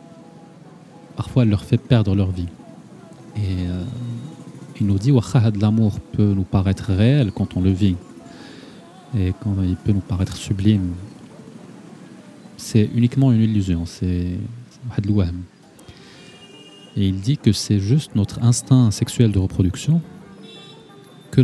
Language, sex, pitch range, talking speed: Arabic, male, 100-125 Hz, 130 wpm